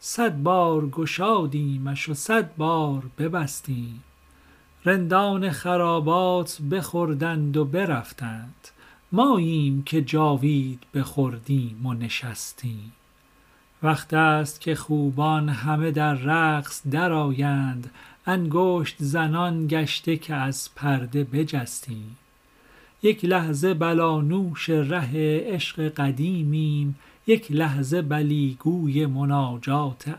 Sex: male